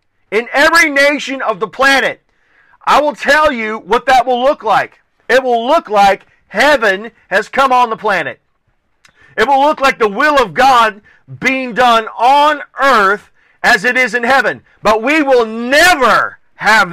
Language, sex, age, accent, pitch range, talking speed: English, male, 40-59, American, 220-275 Hz, 165 wpm